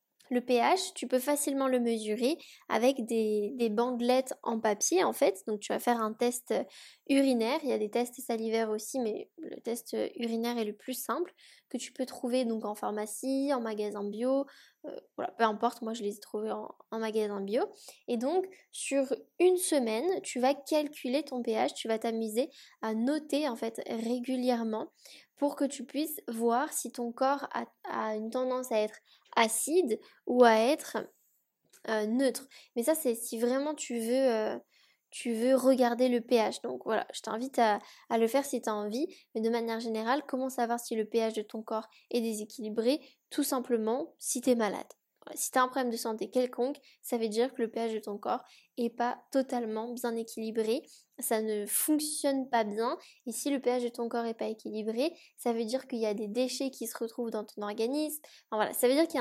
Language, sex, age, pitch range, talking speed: French, female, 10-29, 225-265 Hz, 205 wpm